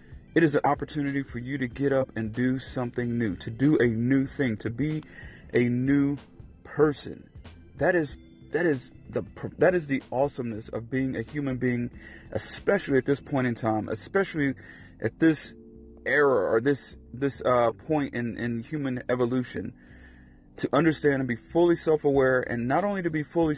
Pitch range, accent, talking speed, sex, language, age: 120-150 Hz, American, 175 wpm, male, English, 30-49